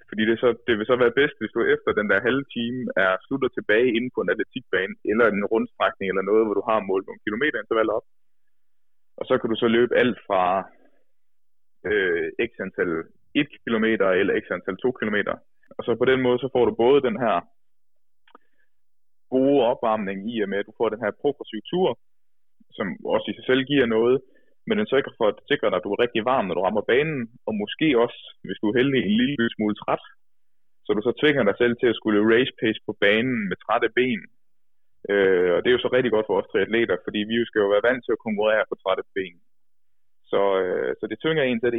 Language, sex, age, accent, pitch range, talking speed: Danish, male, 20-39, native, 110-135 Hz, 225 wpm